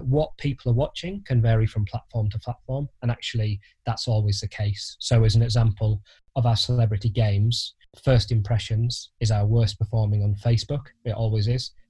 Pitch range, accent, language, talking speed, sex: 105-130 Hz, British, English, 175 wpm, male